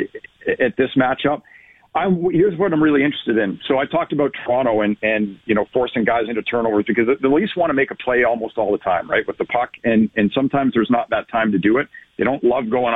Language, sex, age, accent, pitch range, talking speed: English, male, 50-69, American, 120-165 Hz, 245 wpm